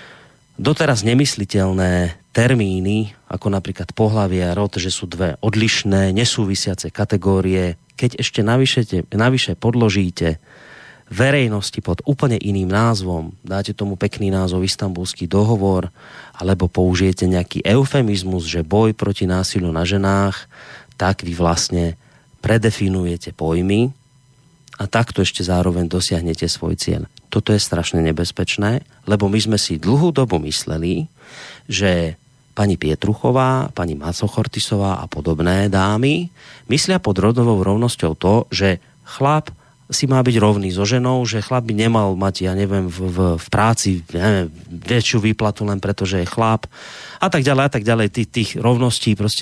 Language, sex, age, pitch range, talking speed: Slovak, male, 30-49, 90-115 Hz, 135 wpm